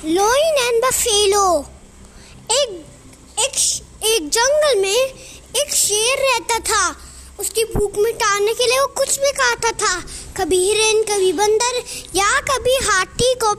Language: Hindi